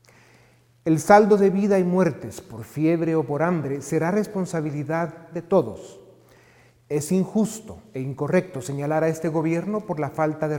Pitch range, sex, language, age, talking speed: 145-180 Hz, male, Spanish, 40-59, 155 wpm